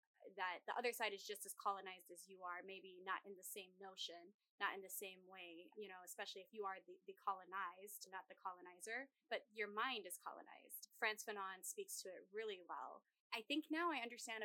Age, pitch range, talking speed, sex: 20-39, 185-220 Hz, 210 wpm, female